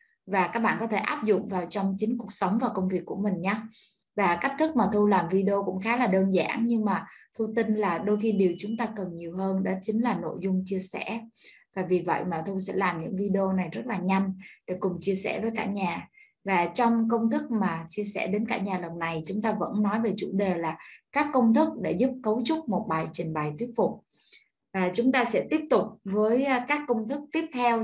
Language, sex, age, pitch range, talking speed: Vietnamese, female, 20-39, 190-235 Hz, 250 wpm